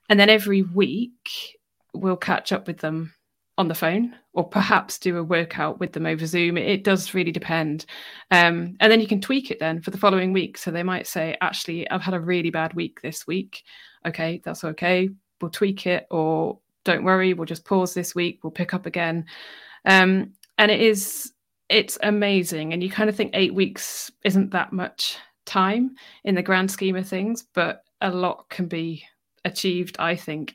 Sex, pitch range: female, 170-200 Hz